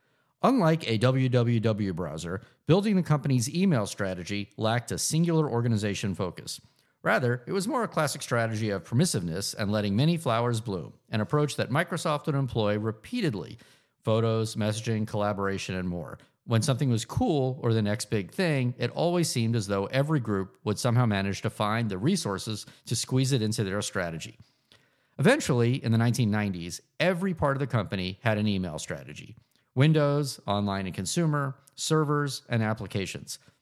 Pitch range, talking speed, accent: 105-145 Hz, 155 wpm, American